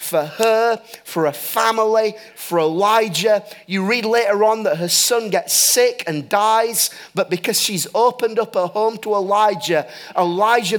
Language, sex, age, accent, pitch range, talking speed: English, male, 30-49, British, 180-225 Hz, 155 wpm